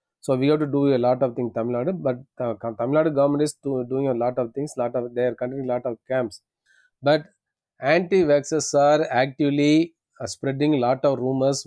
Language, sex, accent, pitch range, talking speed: English, male, Indian, 120-140 Hz, 215 wpm